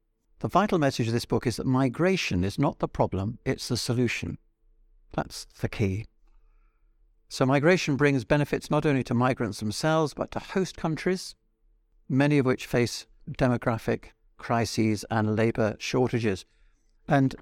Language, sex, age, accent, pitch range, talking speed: English, male, 60-79, British, 110-135 Hz, 145 wpm